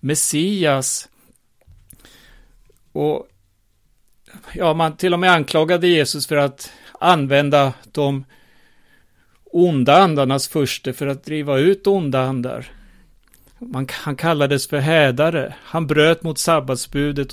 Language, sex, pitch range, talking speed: Swedish, male, 135-165 Hz, 105 wpm